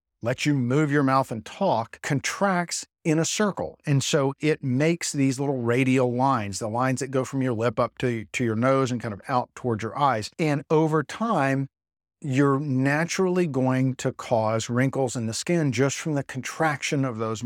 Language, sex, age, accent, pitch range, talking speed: English, male, 50-69, American, 120-145 Hz, 195 wpm